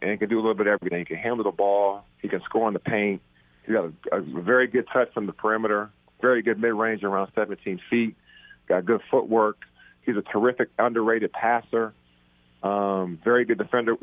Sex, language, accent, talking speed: male, English, American, 205 wpm